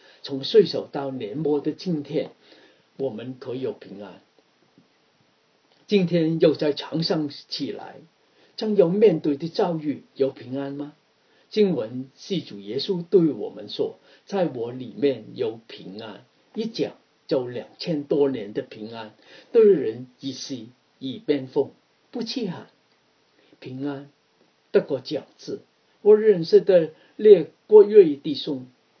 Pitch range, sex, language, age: 140-215 Hz, male, English, 50-69